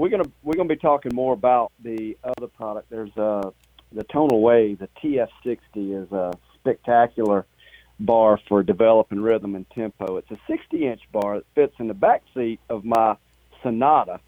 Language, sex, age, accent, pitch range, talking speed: English, male, 40-59, American, 105-135 Hz, 175 wpm